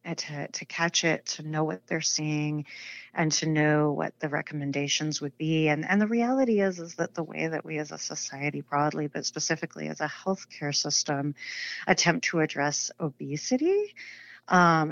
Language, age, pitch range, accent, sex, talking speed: English, 40-59, 145-165 Hz, American, female, 175 wpm